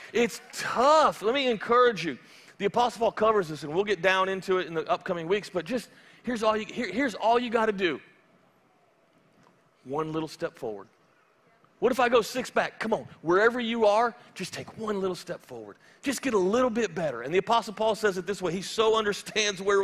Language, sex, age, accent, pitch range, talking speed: English, male, 40-59, American, 190-245 Hz, 215 wpm